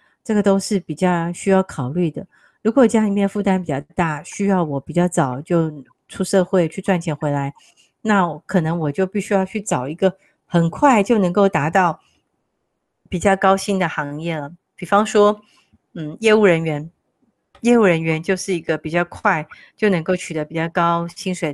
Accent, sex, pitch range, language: native, female, 160-205 Hz, Chinese